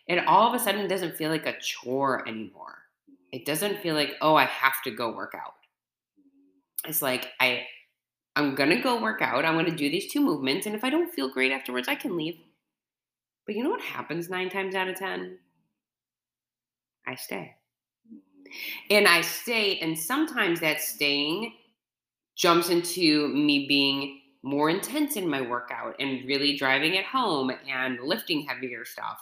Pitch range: 140-205 Hz